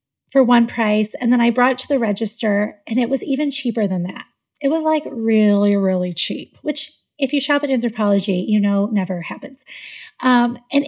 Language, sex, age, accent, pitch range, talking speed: English, female, 30-49, American, 230-285 Hz, 200 wpm